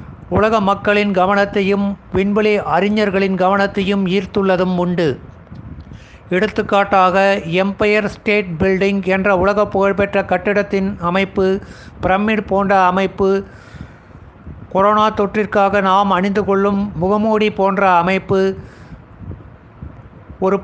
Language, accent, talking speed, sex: Tamil, native, 85 wpm, male